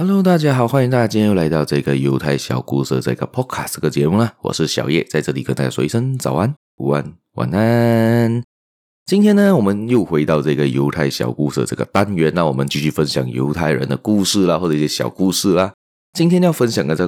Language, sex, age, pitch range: Chinese, male, 20-39, 75-120 Hz